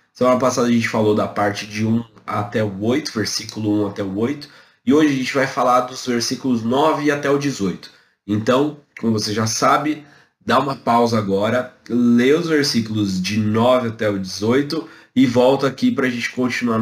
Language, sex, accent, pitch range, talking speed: Portuguese, male, Brazilian, 105-140 Hz, 190 wpm